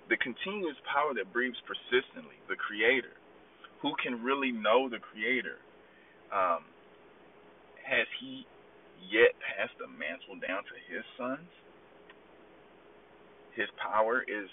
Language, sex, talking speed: English, male, 115 wpm